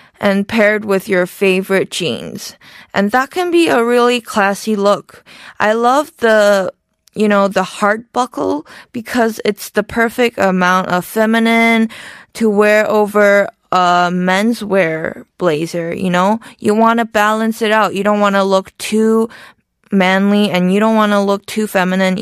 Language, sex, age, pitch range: Korean, female, 20-39, 190-220 Hz